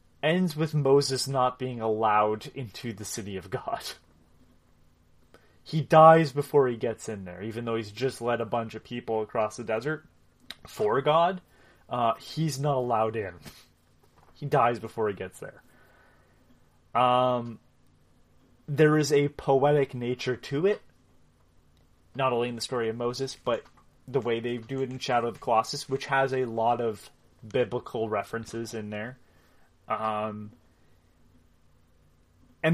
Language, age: English, 20-39